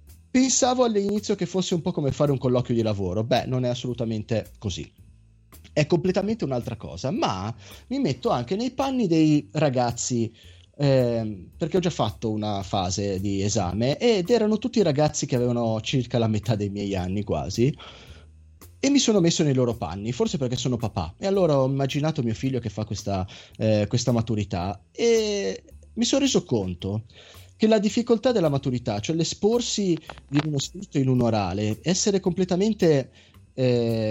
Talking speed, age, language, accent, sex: 165 wpm, 30-49, Italian, native, male